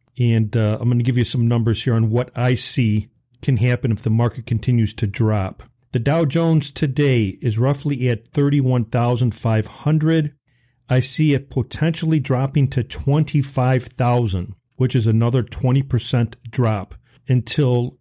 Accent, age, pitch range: American, 40-59, 115-135 Hz